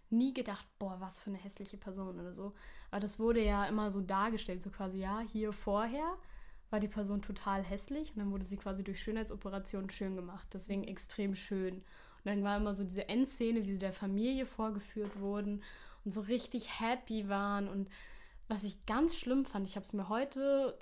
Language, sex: German, female